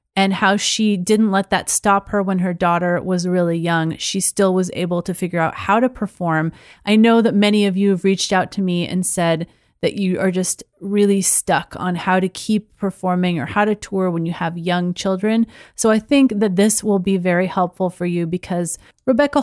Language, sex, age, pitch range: English, female, 30-49, 185-260 Hz